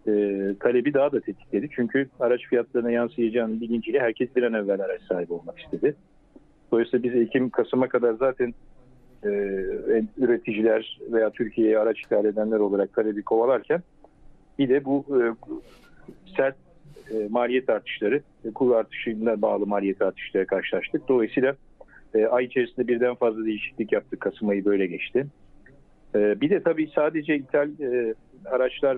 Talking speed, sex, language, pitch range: 140 wpm, male, Turkish, 110-135 Hz